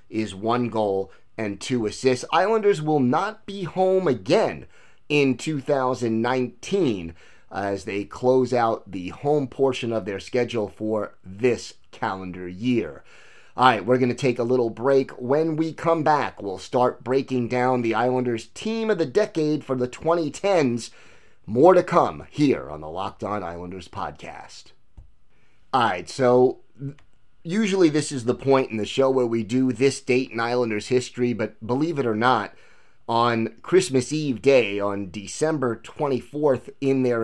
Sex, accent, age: male, American, 30-49